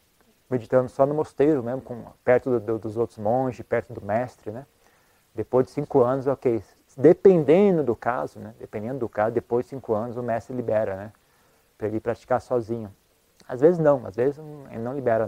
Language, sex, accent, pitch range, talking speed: Portuguese, male, Brazilian, 110-135 Hz, 195 wpm